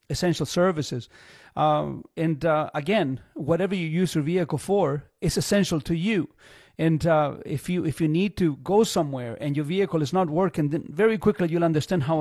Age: 40-59